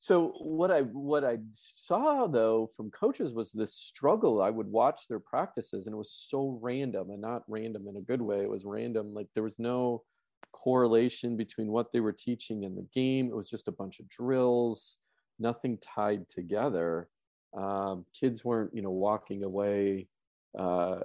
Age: 40-59